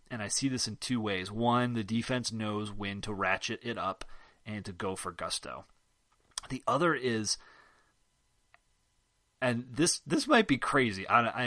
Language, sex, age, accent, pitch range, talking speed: English, male, 30-49, American, 100-125 Hz, 160 wpm